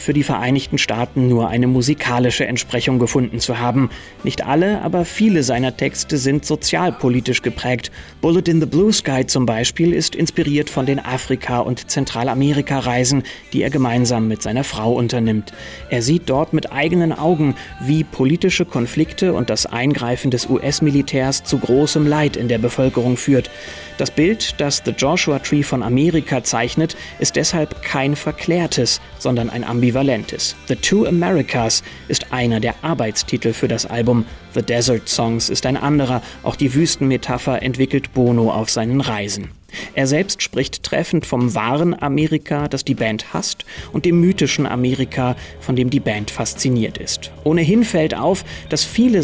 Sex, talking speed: male, 155 wpm